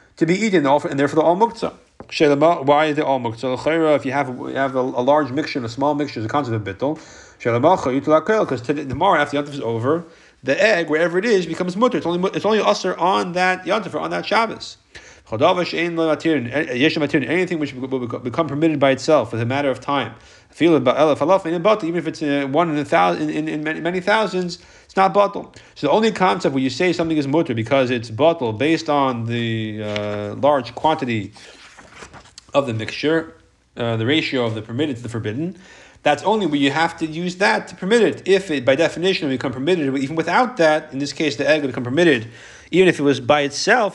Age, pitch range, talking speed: 30-49, 125-165 Hz, 195 wpm